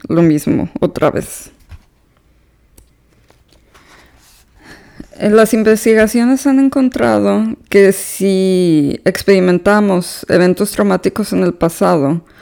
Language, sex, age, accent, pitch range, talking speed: Spanish, female, 20-39, Mexican, 170-200 Hz, 75 wpm